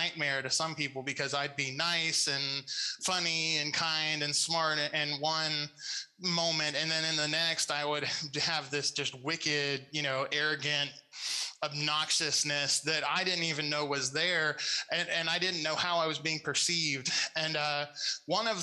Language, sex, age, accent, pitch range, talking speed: English, male, 20-39, American, 145-165 Hz, 170 wpm